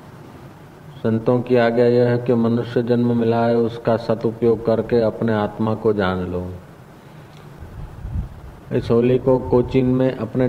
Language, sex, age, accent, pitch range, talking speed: Hindi, male, 50-69, native, 110-125 Hz, 135 wpm